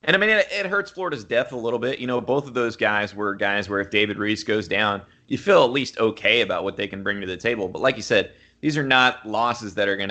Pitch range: 95-115 Hz